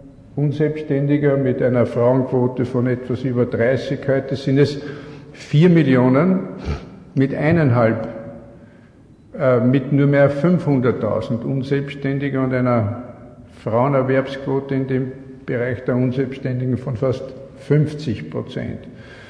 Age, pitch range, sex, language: 50-69, 120-135 Hz, male, German